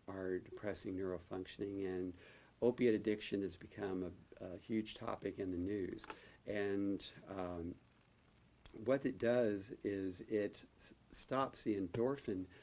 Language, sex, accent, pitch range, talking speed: English, male, American, 90-110 Hz, 115 wpm